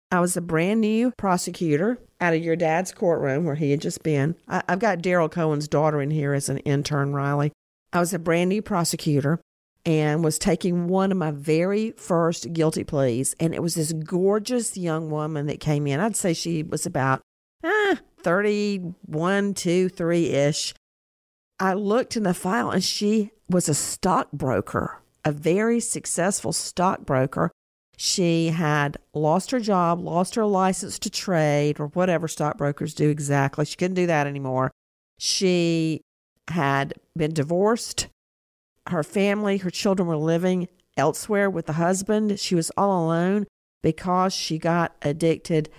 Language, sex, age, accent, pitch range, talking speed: English, female, 50-69, American, 150-190 Hz, 155 wpm